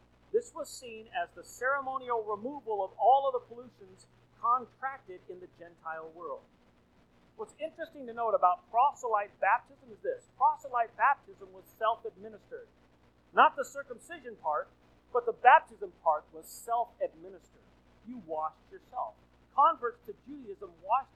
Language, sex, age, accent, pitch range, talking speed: English, male, 40-59, American, 195-300 Hz, 135 wpm